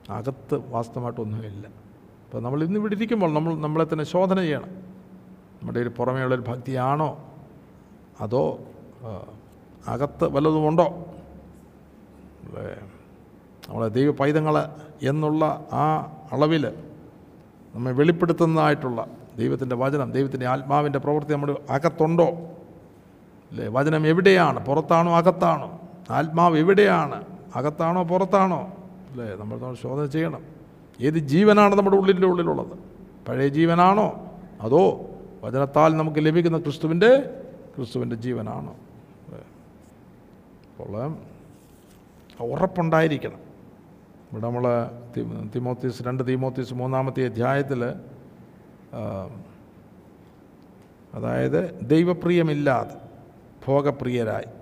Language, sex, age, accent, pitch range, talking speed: Malayalam, male, 50-69, native, 125-170 Hz, 80 wpm